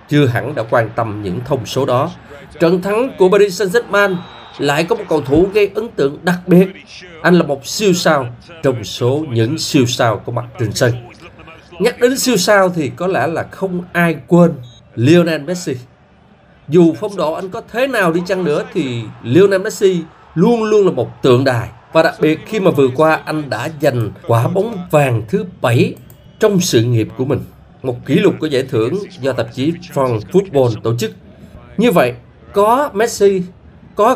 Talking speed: 190 wpm